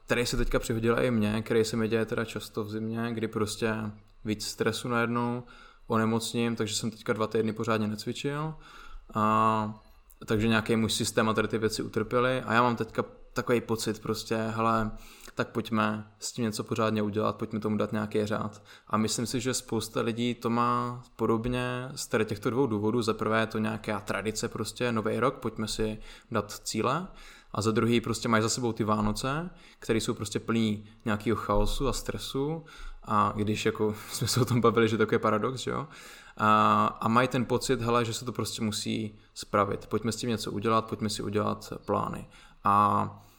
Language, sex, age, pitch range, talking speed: Slovak, male, 20-39, 110-120 Hz, 185 wpm